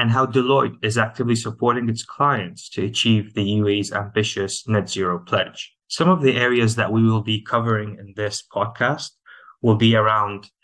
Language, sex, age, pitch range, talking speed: English, male, 20-39, 105-130 Hz, 175 wpm